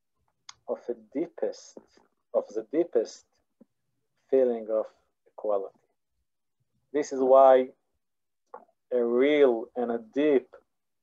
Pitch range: 120-200 Hz